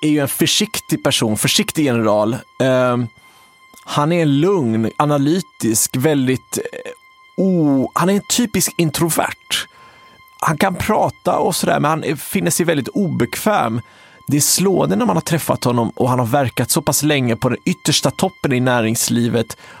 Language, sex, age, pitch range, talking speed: Swedish, male, 30-49, 120-160 Hz, 160 wpm